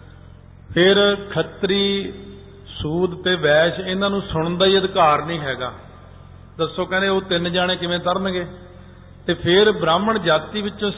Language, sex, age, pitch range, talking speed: Punjabi, male, 50-69, 125-185 Hz, 135 wpm